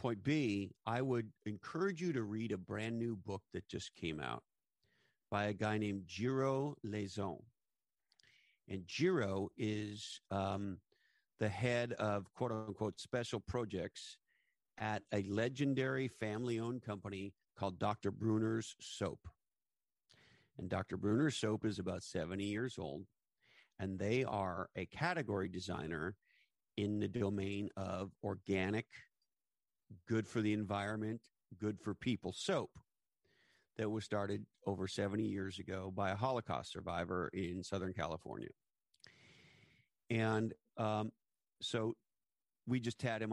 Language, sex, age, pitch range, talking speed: English, male, 50-69, 100-115 Hz, 125 wpm